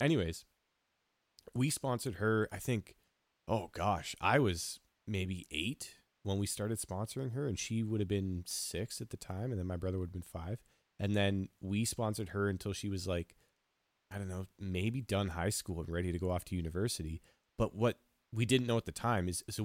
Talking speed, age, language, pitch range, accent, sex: 205 wpm, 30-49, English, 90-110 Hz, American, male